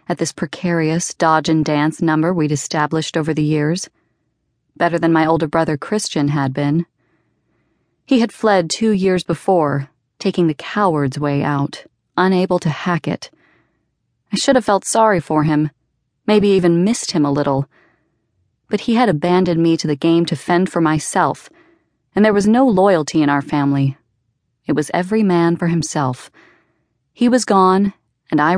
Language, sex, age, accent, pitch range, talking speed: English, female, 30-49, American, 150-195 Hz, 160 wpm